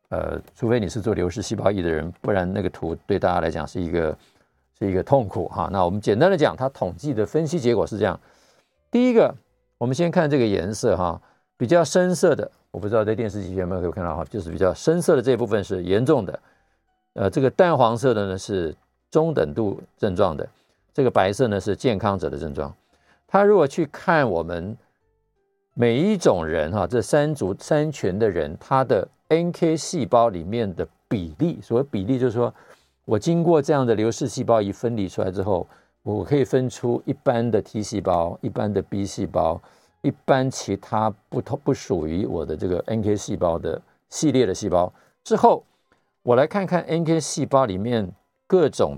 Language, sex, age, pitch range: Chinese, male, 50-69, 100-140 Hz